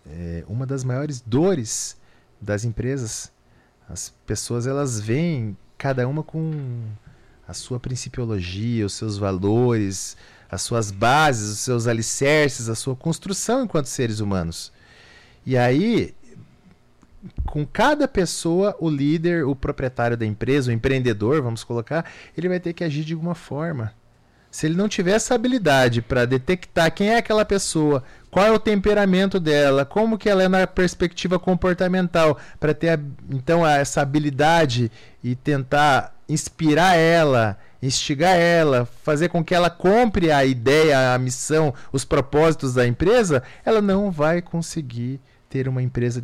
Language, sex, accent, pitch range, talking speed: Portuguese, male, Brazilian, 120-170 Hz, 145 wpm